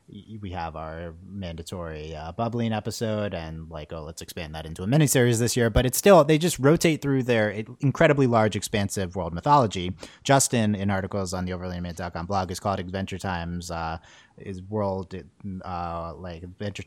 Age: 30-49